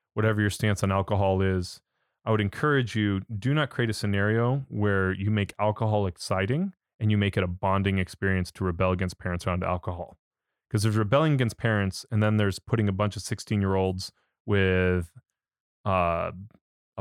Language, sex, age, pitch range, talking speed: English, male, 30-49, 95-115 Hz, 170 wpm